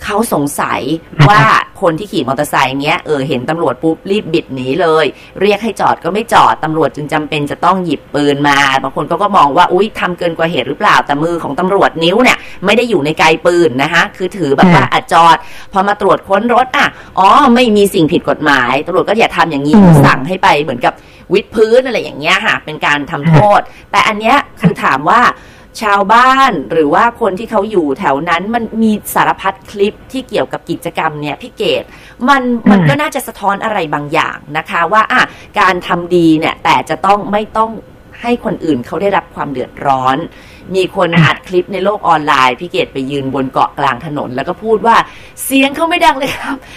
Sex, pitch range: female, 155-220 Hz